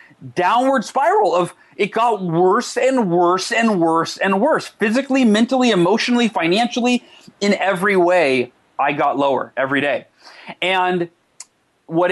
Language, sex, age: English, male, 30-49